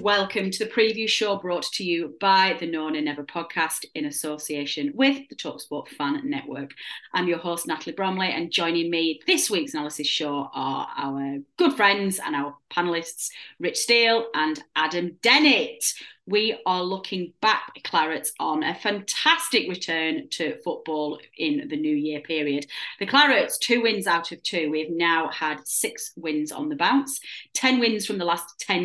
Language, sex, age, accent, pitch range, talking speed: English, female, 30-49, British, 160-220 Hz, 170 wpm